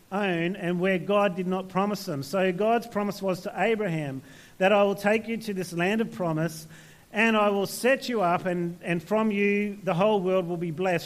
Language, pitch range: English, 185-230 Hz